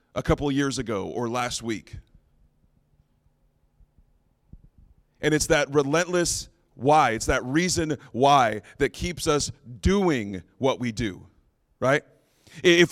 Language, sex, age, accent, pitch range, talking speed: English, male, 30-49, American, 120-155 Hz, 115 wpm